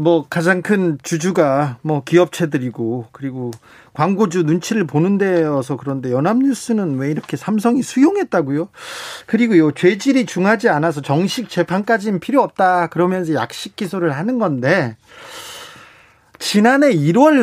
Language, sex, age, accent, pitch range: Korean, male, 40-59, native, 160-230 Hz